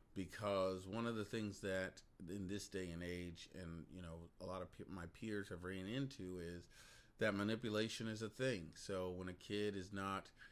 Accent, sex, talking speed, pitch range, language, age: American, male, 195 wpm, 90-105 Hz, English, 30-49